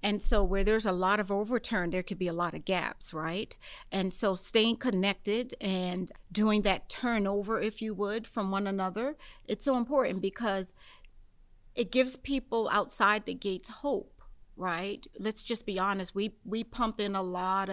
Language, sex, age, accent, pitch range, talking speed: English, female, 40-59, American, 190-230 Hz, 175 wpm